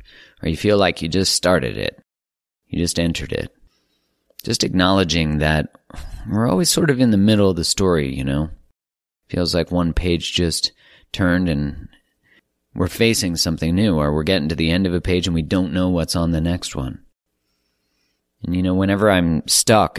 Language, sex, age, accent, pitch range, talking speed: English, male, 30-49, American, 75-95 Hz, 185 wpm